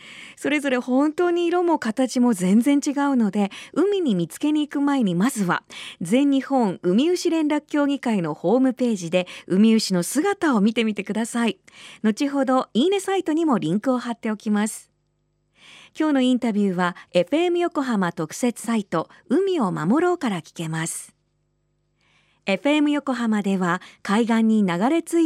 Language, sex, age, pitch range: Japanese, female, 40-59, 185-285 Hz